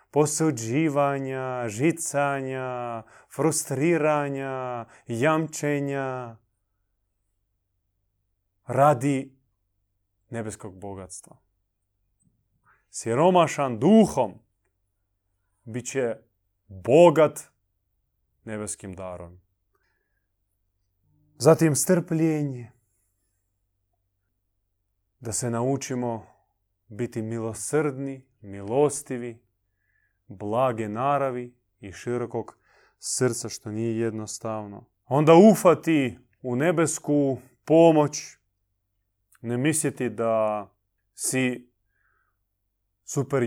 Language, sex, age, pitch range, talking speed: Croatian, male, 30-49, 100-135 Hz, 55 wpm